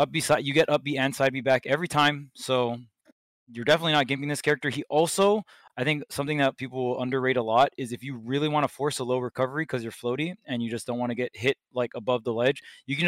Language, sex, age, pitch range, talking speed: English, male, 20-39, 130-150 Hz, 260 wpm